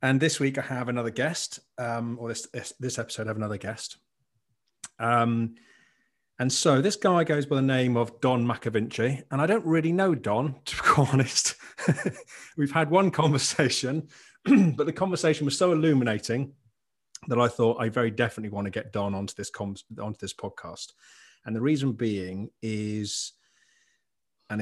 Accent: British